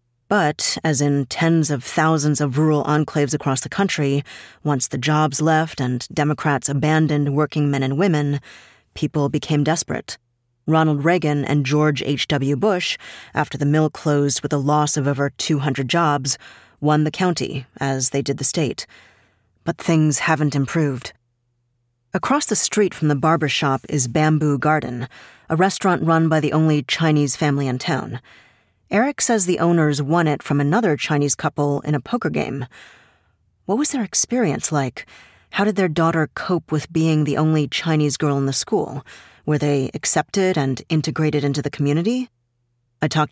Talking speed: 160 wpm